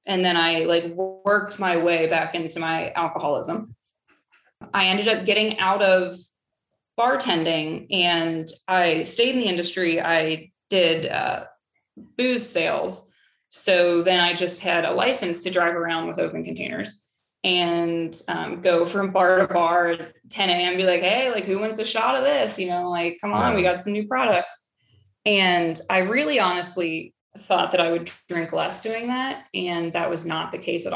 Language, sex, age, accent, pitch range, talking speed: English, female, 20-39, American, 170-195 Hz, 175 wpm